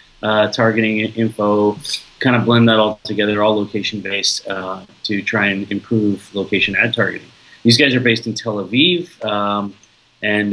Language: English